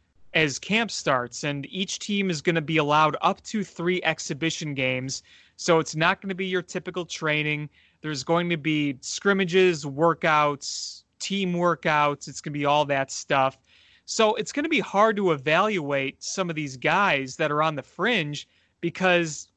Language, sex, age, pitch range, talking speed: English, male, 30-49, 150-185 Hz, 180 wpm